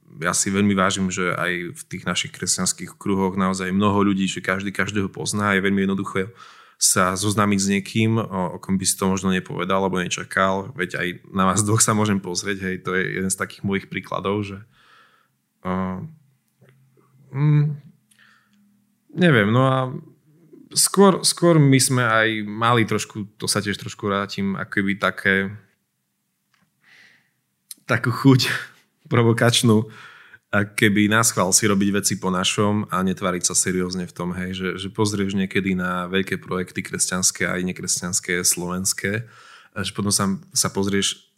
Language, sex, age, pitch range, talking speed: Slovak, male, 20-39, 95-115 Hz, 155 wpm